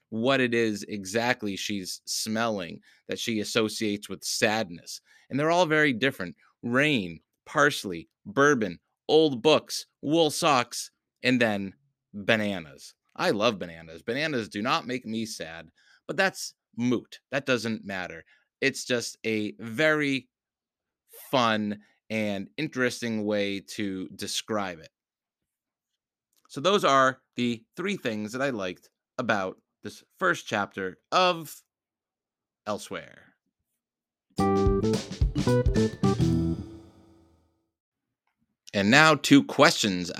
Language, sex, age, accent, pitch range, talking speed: English, male, 30-49, American, 100-130 Hz, 105 wpm